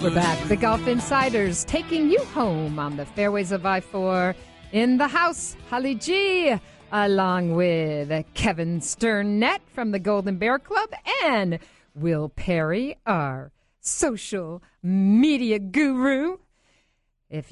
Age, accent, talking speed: 50-69, American, 120 wpm